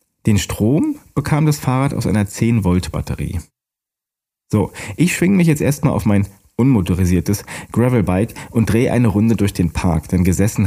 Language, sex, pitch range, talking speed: German, male, 95-135 Hz, 150 wpm